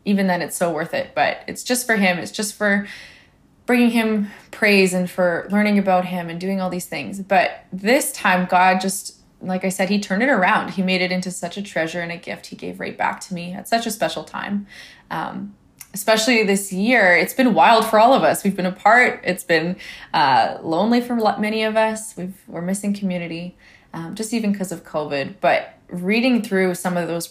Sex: female